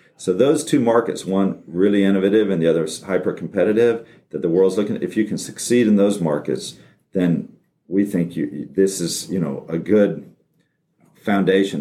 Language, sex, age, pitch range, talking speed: English, male, 50-69, 70-95 Hz, 175 wpm